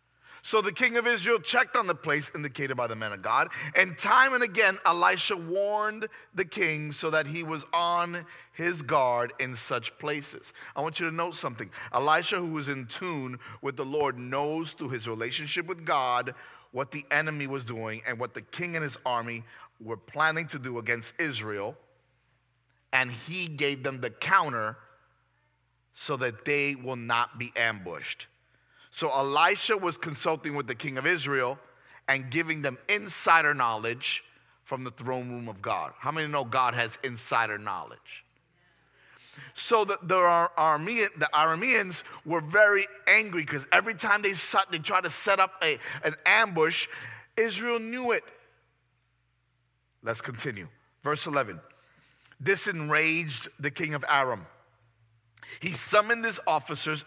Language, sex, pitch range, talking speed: English, male, 125-175 Hz, 160 wpm